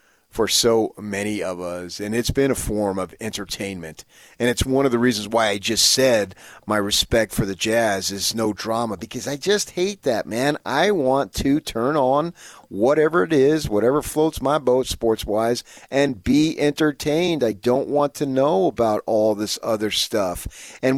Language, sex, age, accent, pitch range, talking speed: English, male, 40-59, American, 105-145 Hz, 180 wpm